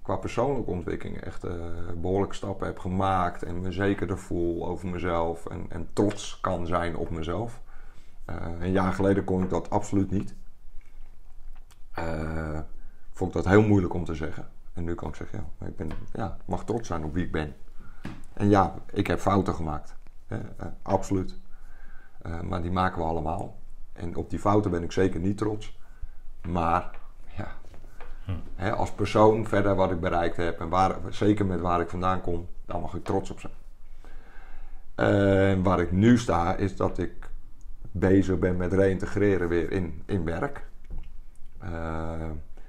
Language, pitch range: Dutch, 85-100 Hz